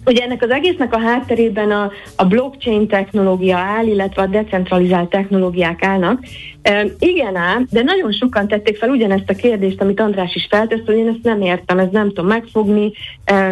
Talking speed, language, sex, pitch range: 180 wpm, Hungarian, female, 185-225 Hz